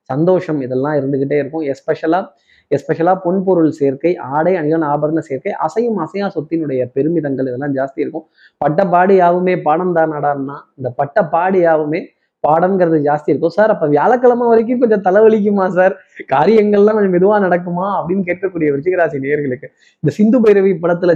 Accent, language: native, Tamil